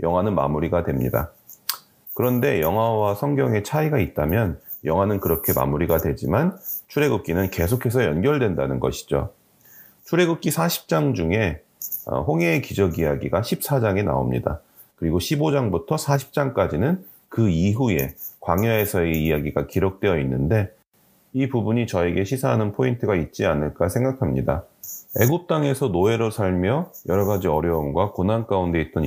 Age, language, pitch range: 30-49, Korean, 85-135 Hz